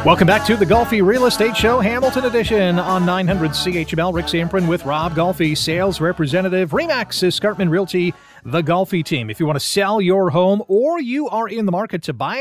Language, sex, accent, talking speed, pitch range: English, male, American, 200 wpm, 150-200 Hz